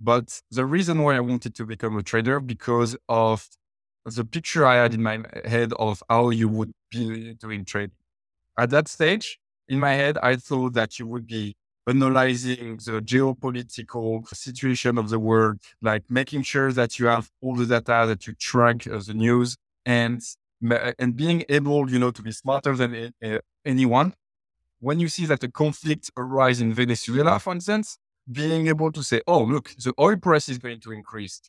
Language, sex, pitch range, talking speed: English, male, 115-135 Hz, 180 wpm